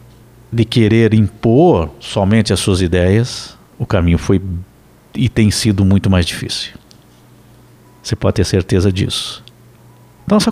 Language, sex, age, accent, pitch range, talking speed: Portuguese, male, 60-79, Brazilian, 100-140 Hz, 125 wpm